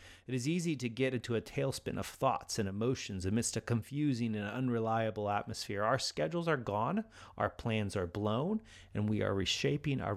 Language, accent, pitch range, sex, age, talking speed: English, American, 95-130 Hz, male, 30-49, 185 wpm